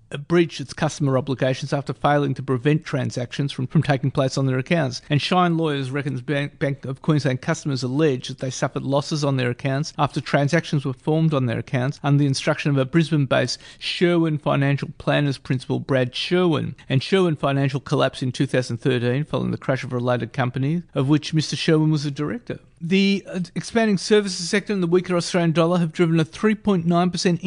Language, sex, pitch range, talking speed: English, male, 140-170 Hz, 185 wpm